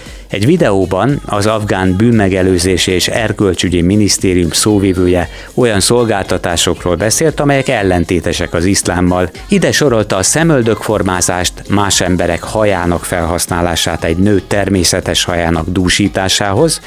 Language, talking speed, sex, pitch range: Hungarian, 105 wpm, male, 90-110 Hz